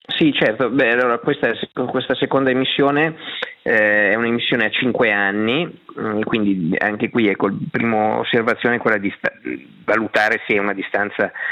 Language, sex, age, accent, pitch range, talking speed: Italian, male, 30-49, native, 100-120 Hz, 155 wpm